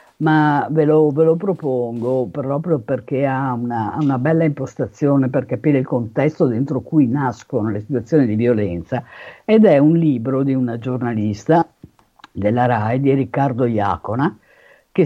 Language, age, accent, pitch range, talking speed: Italian, 50-69, native, 120-155 Hz, 145 wpm